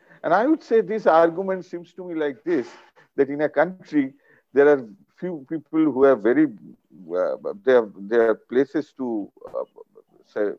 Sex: male